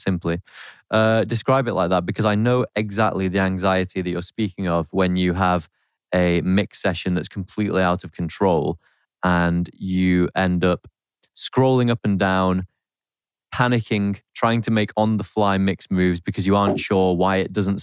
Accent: British